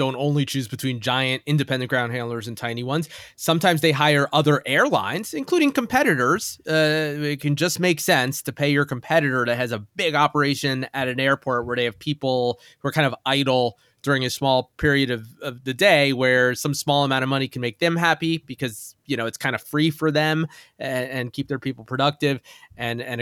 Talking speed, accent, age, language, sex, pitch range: 205 wpm, American, 20-39, English, male, 120-150 Hz